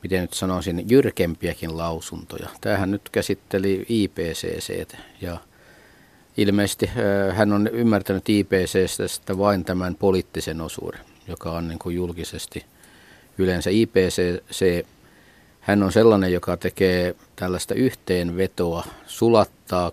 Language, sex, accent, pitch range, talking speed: Finnish, male, native, 85-100 Hz, 100 wpm